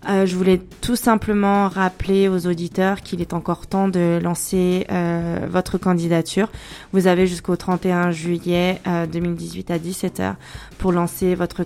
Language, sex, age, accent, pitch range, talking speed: French, female, 20-39, French, 170-185 Hz, 150 wpm